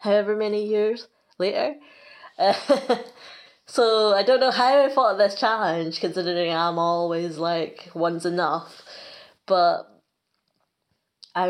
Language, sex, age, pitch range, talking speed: English, female, 20-39, 175-235 Hz, 120 wpm